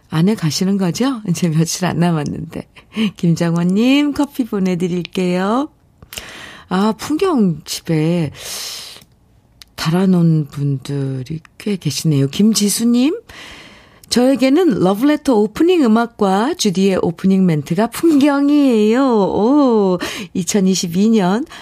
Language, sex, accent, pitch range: Korean, female, native, 165-235 Hz